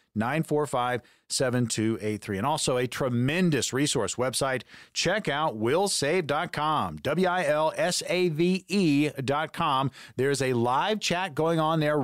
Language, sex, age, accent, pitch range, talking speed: English, male, 40-59, American, 125-160 Hz, 90 wpm